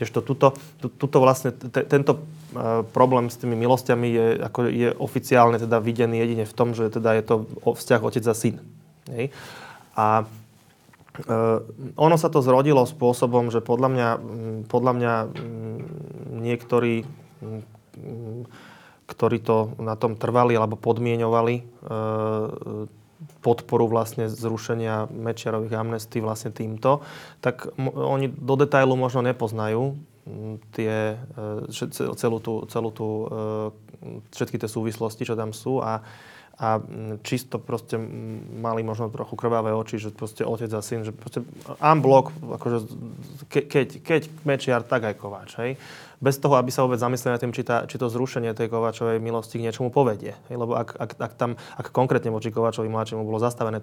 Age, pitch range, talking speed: 20-39, 110-130 Hz, 140 wpm